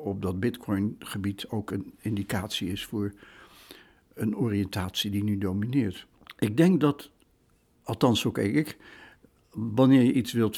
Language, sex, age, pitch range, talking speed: Dutch, male, 60-79, 105-125 Hz, 135 wpm